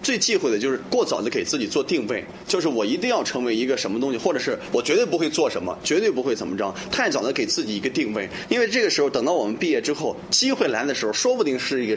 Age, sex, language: 20-39, male, Chinese